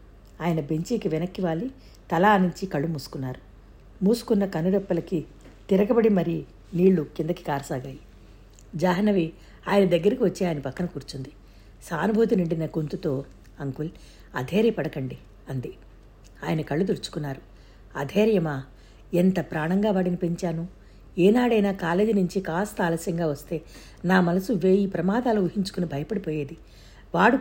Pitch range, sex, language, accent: 155-200 Hz, female, Telugu, native